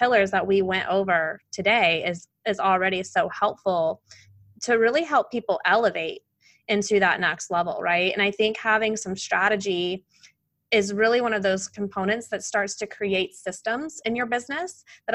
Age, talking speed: 20-39, 165 wpm